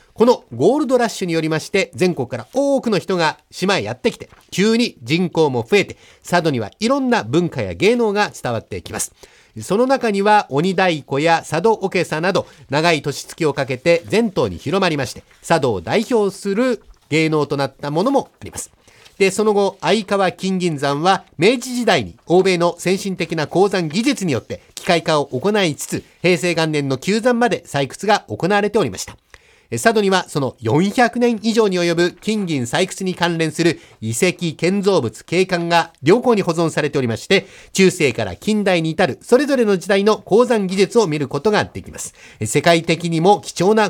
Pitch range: 155-205 Hz